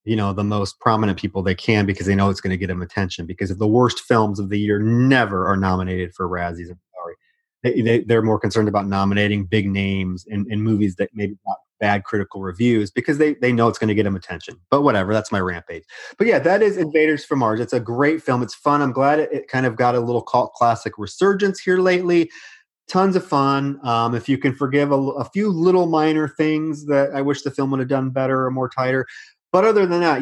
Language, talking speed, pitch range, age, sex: English, 235 wpm, 105-140 Hz, 30-49, male